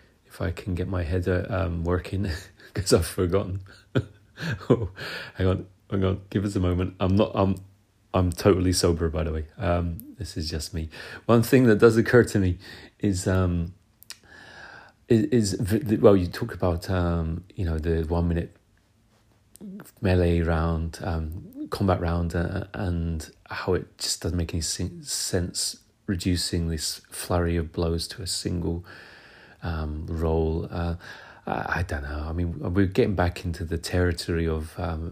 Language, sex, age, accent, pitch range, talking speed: English, male, 30-49, British, 85-100 Hz, 160 wpm